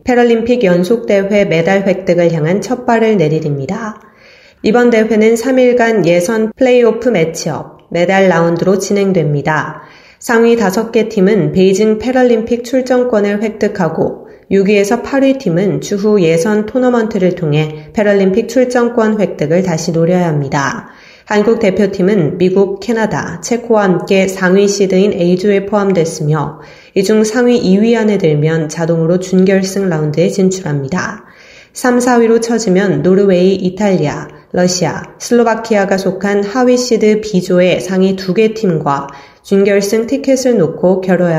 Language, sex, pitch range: Korean, female, 175-225 Hz